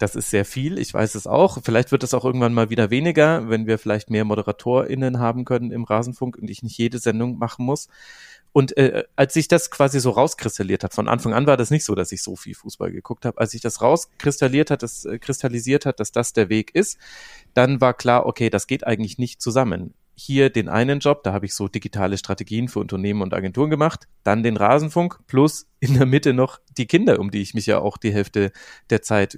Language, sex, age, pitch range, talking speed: German, male, 30-49, 110-130 Hz, 230 wpm